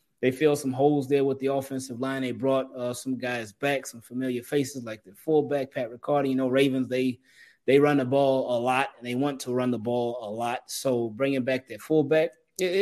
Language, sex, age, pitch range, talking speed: English, male, 20-39, 130-145 Hz, 225 wpm